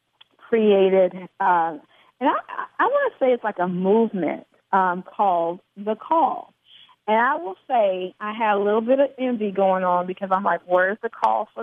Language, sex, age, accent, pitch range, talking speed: English, female, 40-59, American, 185-235 Hz, 180 wpm